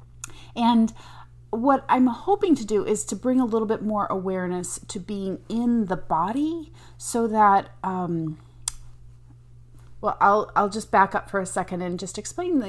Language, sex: English, female